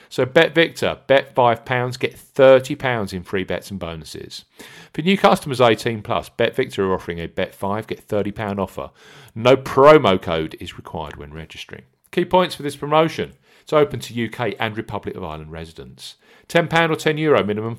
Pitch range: 100-155 Hz